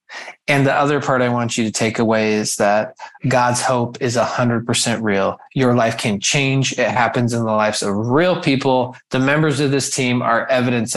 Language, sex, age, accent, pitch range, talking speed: English, male, 20-39, American, 125-155 Hz, 210 wpm